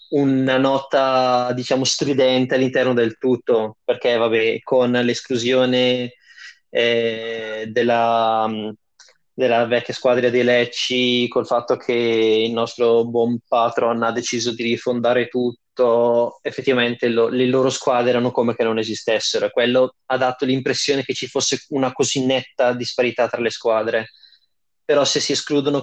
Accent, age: native, 20-39